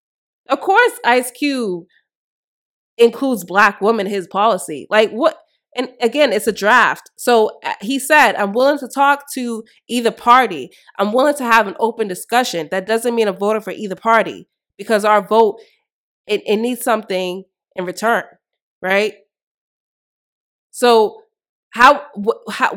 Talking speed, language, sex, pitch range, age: 140 wpm, English, female, 195-275 Hz, 20-39